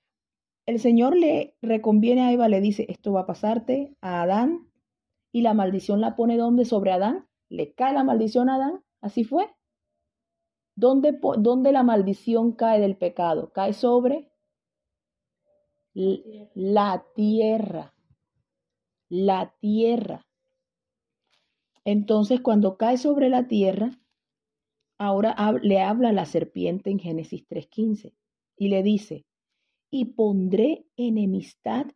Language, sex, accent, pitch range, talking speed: English, female, Venezuelan, 195-245 Hz, 115 wpm